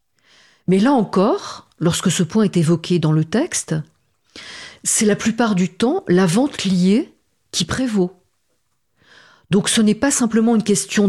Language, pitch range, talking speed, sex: French, 165-220 Hz, 150 wpm, female